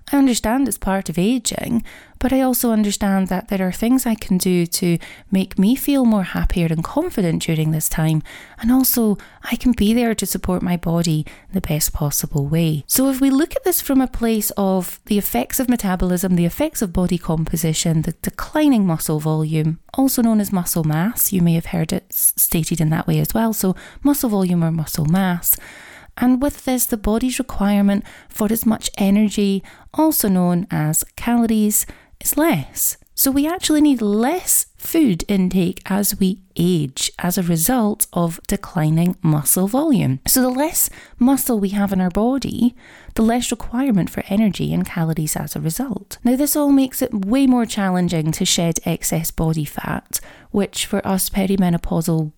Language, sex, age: English, female, 30-49